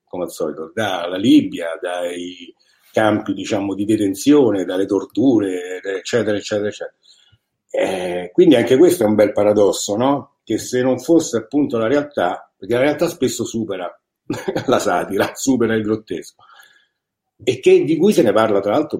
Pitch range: 105-150 Hz